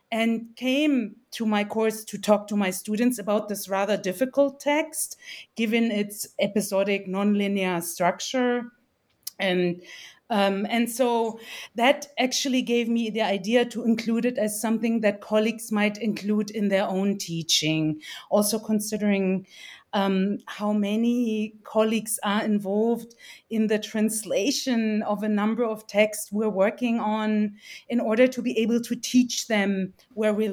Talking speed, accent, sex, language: 140 wpm, German, female, English